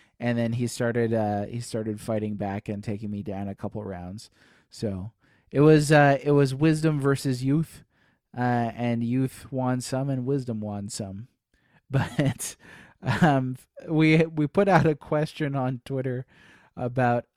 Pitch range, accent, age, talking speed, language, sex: 115-145 Hz, American, 30-49, 155 wpm, English, male